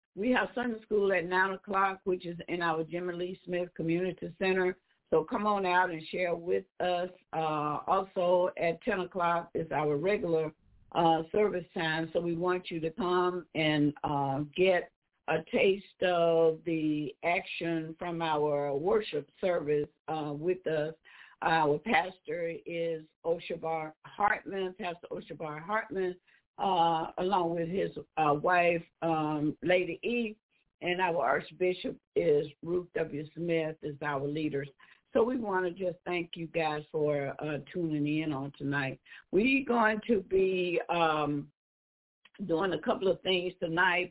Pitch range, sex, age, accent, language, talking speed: 155-190 Hz, female, 60-79, American, English, 145 wpm